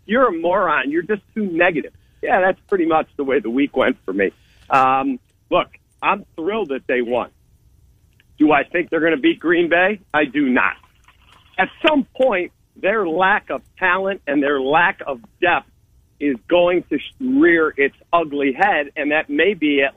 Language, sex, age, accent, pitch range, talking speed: English, male, 50-69, American, 140-205 Hz, 185 wpm